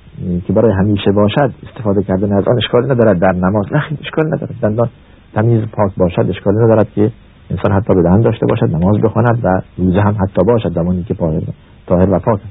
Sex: male